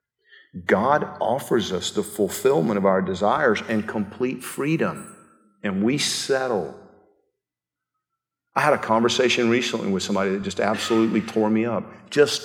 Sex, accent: male, American